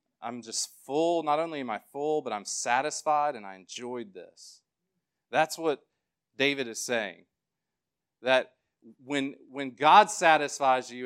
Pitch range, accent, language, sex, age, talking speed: 120-155 Hz, American, English, male, 40-59, 140 wpm